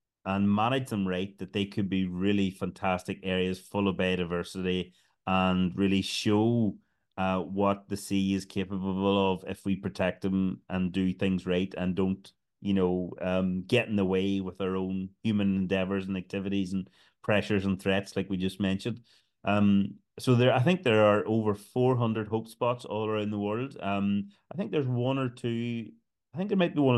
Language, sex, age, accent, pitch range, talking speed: English, male, 30-49, Irish, 95-105 Hz, 190 wpm